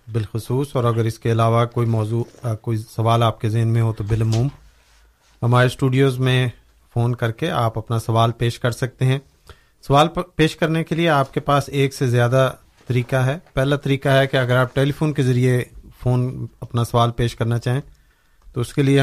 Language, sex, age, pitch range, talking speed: Urdu, male, 40-59, 120-140 Hz, 200 wpm